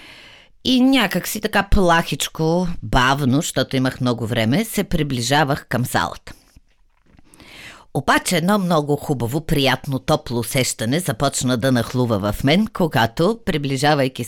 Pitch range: 125-205 Hz